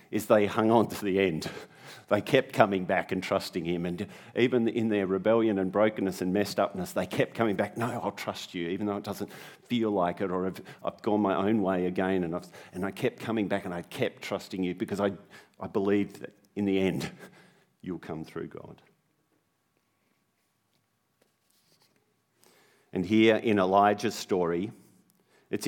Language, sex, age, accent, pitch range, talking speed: English, male, 50-69, Australian, 90-105 Hz, 175 wpm